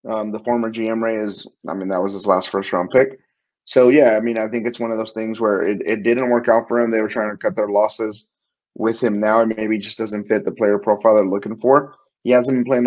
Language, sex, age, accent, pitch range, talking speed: English, male, 30-49, American, 105-120 Hz, 290 wpm